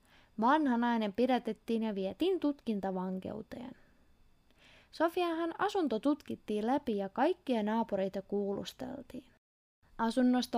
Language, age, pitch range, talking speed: Finnish, 20-39, 210-295 Hz, 80 wpm